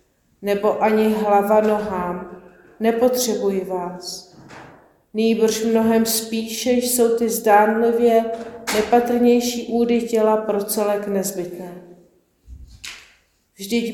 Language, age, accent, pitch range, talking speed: Czech, 40-59, native, 210-235 Hz, 80 wpm